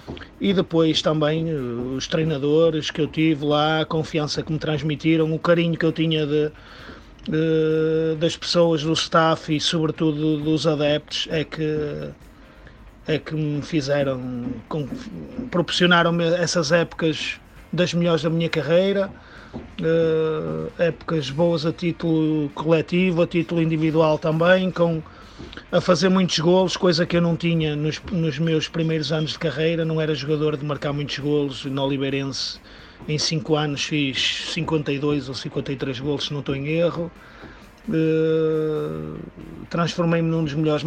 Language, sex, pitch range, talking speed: Portuguese, male, 150-170 Hz, 135 wpm